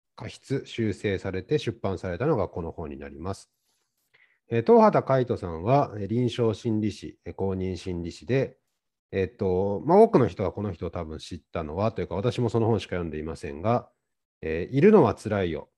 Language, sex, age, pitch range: Japanese, male, 40-59, 85-130 Hz